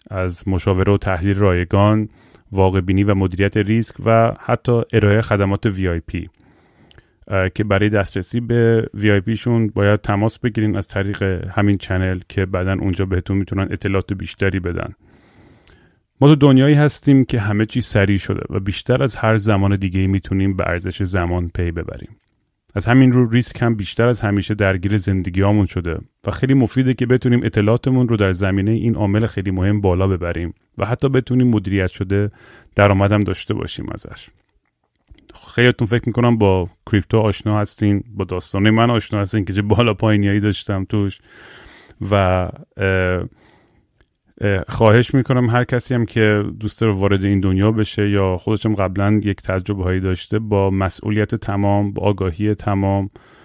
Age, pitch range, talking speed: 30-49, 95-110 Hz, 150 wpm